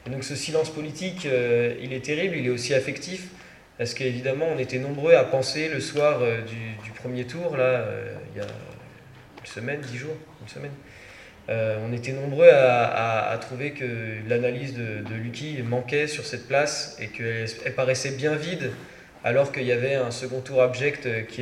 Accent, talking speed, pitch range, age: French, 195 wpm, 120-150 Hz, 20-39